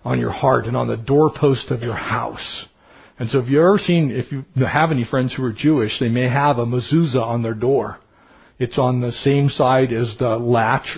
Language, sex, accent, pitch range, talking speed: English, male, American, 125-150 Hz, 220 wpm